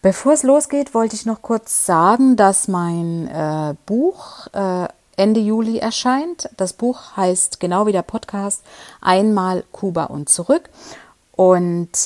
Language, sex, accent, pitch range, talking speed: German, female, German, 165-215 Hz, 140 wpm